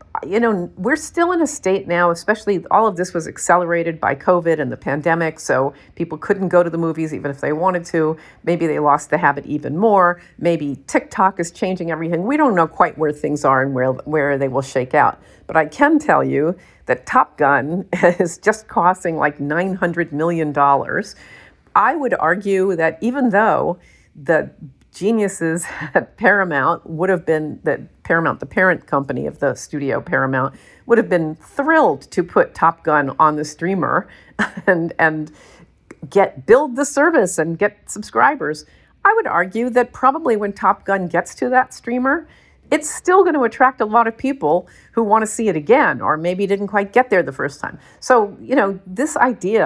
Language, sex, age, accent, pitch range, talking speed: English, female, 50-69, American, 160-220 Hz, 185 wpm